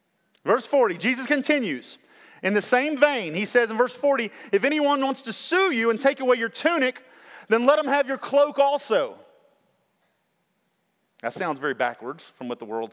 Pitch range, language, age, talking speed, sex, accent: 180-285 Hz, English, 40-59, 180 wpm, male, American